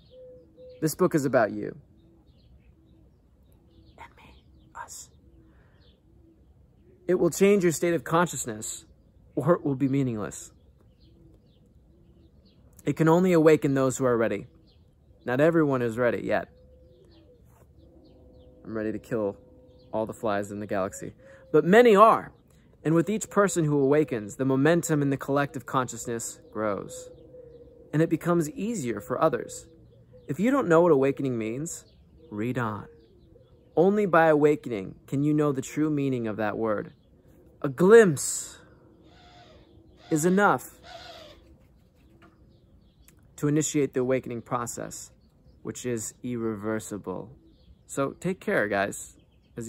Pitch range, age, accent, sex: 105-155 Hz, 20-39, American, male